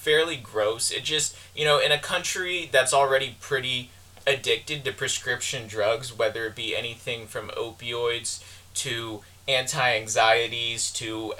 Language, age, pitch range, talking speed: English, 20-39, 115-150 Hz, 130 wpm